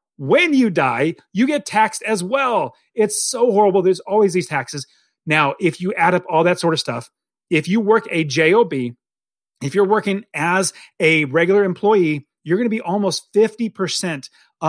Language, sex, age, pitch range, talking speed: English, male, 30-49, 155-215 Hz, 170 wpm